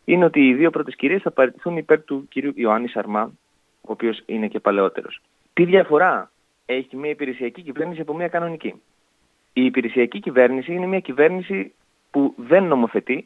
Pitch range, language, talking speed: 110-155 Hz, Greek, 165 wpm